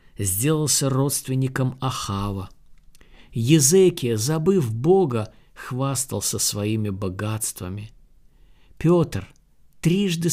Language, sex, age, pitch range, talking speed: Russian, male, 50-69, 110-145 Hz, 65 wpm